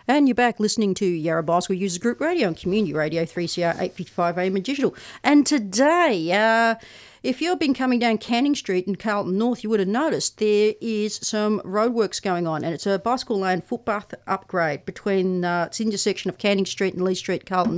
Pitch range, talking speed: 185-225 Hz, 205 wpm